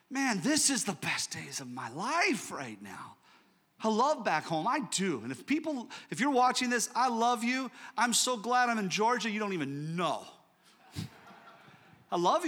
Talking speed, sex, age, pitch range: 190 wpm, male, 40-59, 175-245 Hz